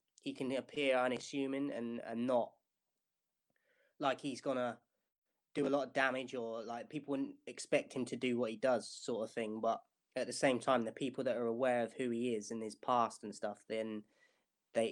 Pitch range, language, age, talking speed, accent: 115-130 Hz, English, 20-39, 200 wpm, British